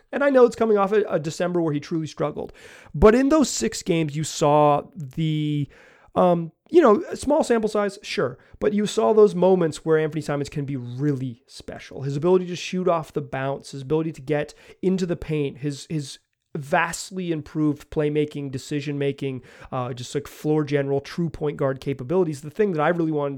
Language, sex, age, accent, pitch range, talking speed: English, male, 30-49, American, 145-185 Hz, 190 wpm